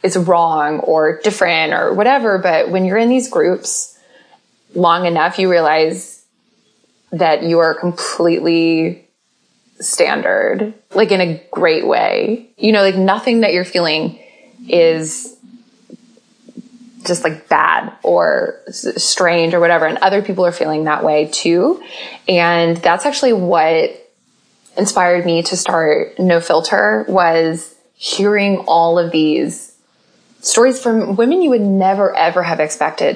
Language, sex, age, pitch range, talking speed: English, female, 20-39, 170-240 Hz, 130 wpm